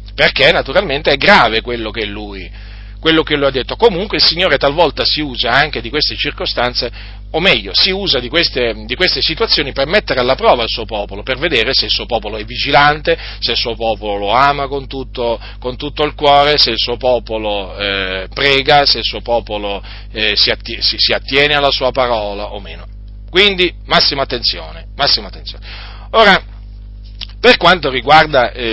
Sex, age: male, 40-59